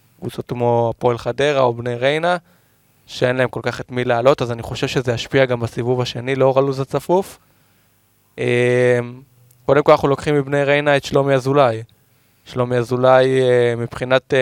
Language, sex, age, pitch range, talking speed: Hebrew, male, 20-39, 120-140 Hz, 150 wpm